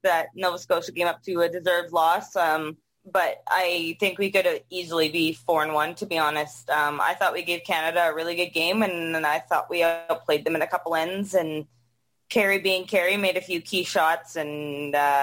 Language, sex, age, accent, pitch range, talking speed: English, female, 20-39, American, 160-200 Hz, 220 wpm